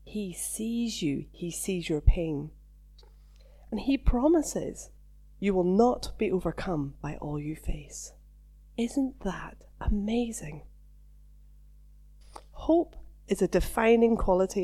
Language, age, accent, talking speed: English, 30-49, British, 110 wpm